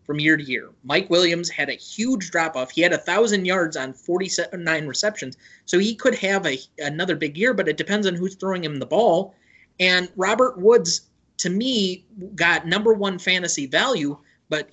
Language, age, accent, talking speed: English, 30-49, American, 190 wpm